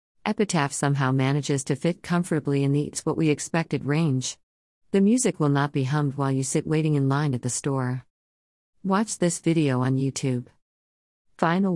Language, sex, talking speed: English, female, 160 wpm